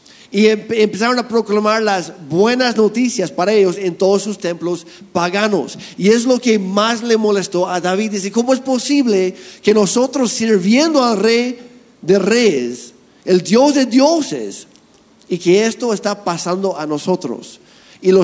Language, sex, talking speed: Spanish, male, 155 wpm